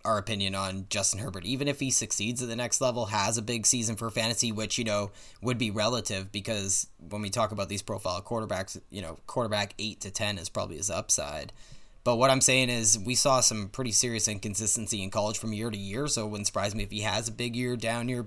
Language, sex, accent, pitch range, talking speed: English, male, American, 105-125 Hz, 240 wpm